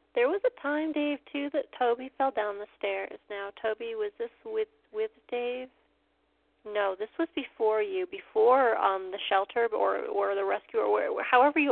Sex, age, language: female, 30-49, English